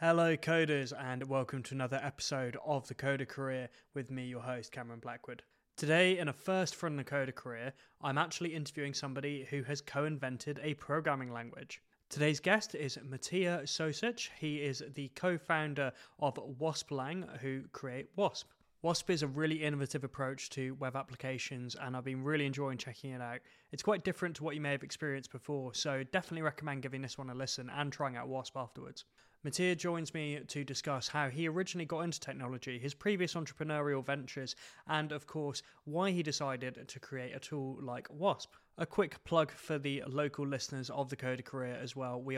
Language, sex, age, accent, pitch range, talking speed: English, male, 20-39, British, 130-150 Hz, 185 wpm